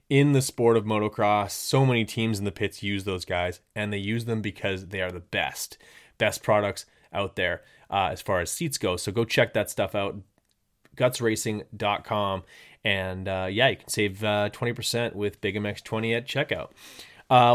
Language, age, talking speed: English, 20-39, 185 wpm